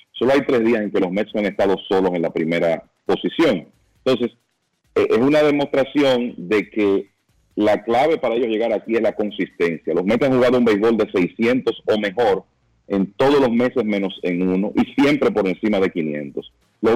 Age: 40-59